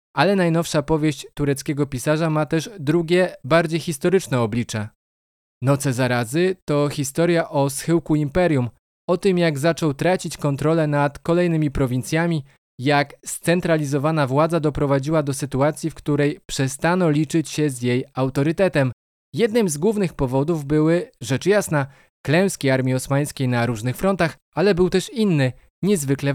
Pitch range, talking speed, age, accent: 135-170 Hz, 135 wpm, 20-39, native